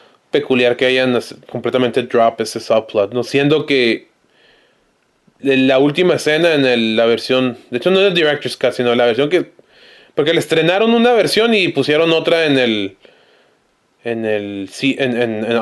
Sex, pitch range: male, 125-185 Hz